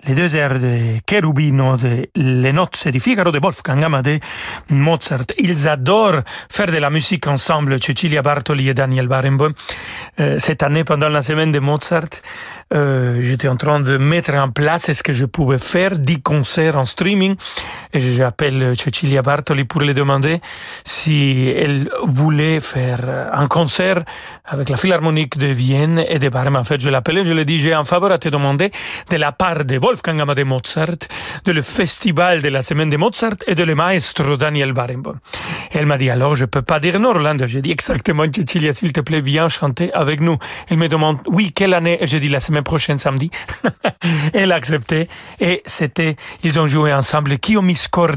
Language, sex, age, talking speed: French, male, 40-59, 190 wpm